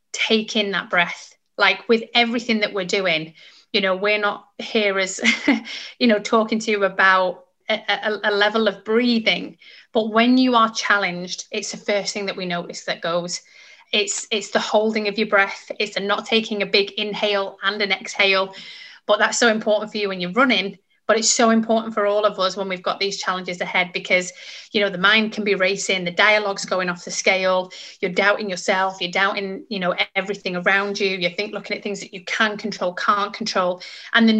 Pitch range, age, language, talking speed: 190-220 Hz, 30-49, English, 210 wpm